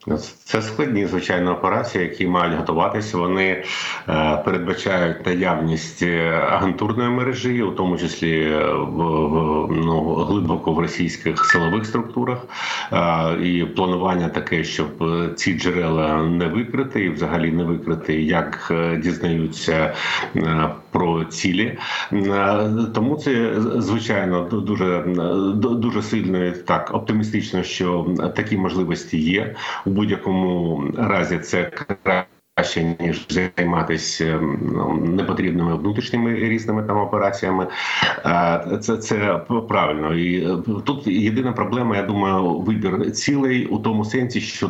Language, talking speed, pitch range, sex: Ukrainian, 105 wpm, 85-110 Hz, male